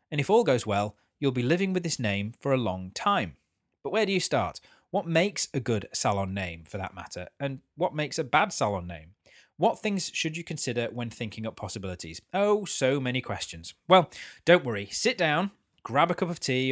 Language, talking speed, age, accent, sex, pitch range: English, 210 wpm, 30-49, British, male, 110-165 Hz